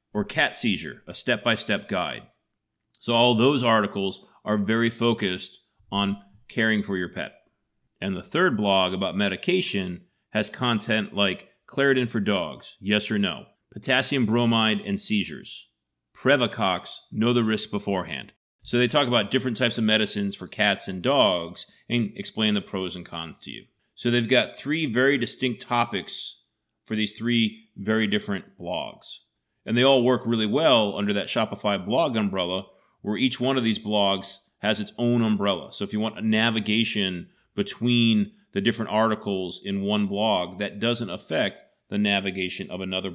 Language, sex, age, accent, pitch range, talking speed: English, male, 40-59, American, 100-115 Hz, 160 wpm